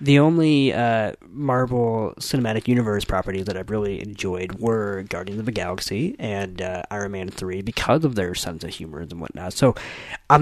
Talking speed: 180 wpm